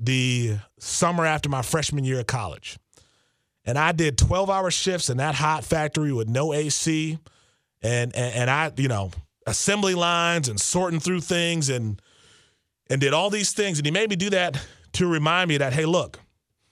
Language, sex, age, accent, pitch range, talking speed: English, male, 30-49, American, 110-150 Hz, 185 wpm